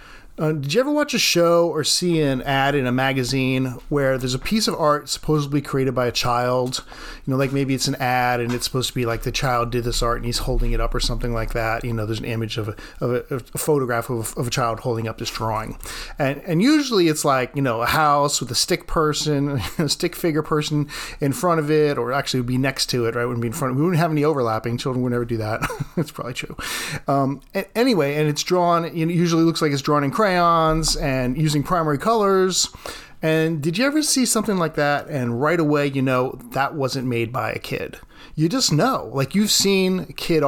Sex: male